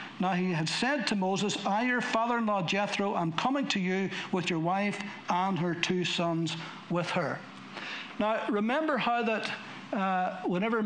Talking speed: 160 wpm